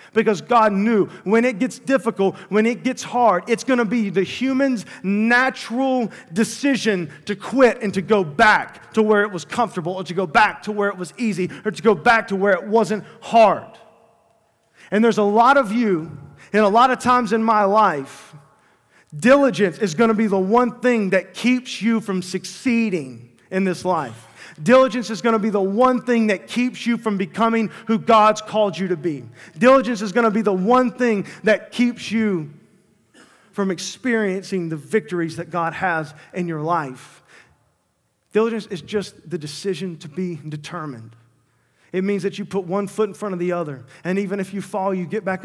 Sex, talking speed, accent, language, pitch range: male, 195 wpm, American, English, 180-225 Hz